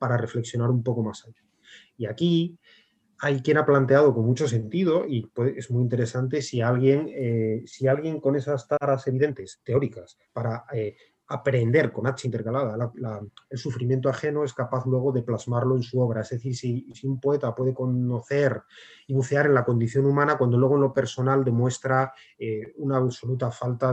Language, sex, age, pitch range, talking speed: Spanish, male, 30-49, 120-140 Hz, 185 wpm